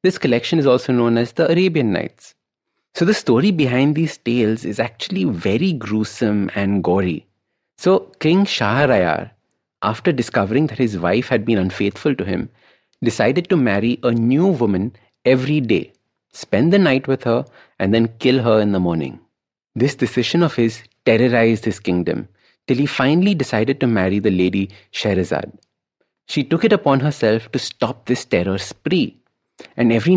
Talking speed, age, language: 165 wpm, 30-49, English